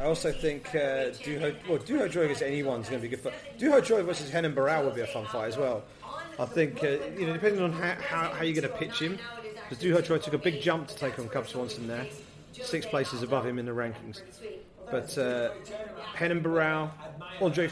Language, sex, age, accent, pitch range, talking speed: English, male, 30-49, British, 130-170 Hz, 230 wpm